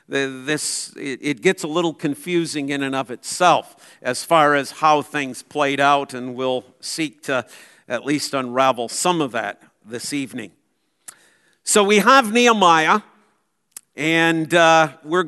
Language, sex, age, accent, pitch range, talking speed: English, male, 50-69, American, 160-210 Hz, 140 wpm